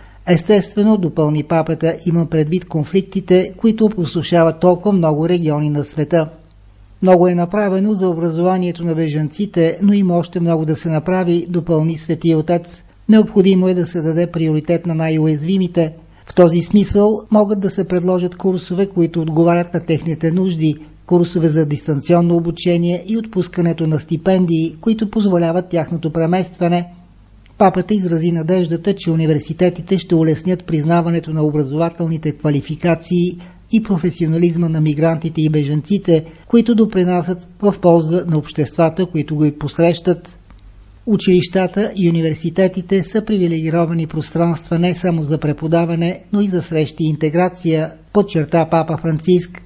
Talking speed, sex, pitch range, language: 130 wpm, male, 160-185 Hz, Bulgarian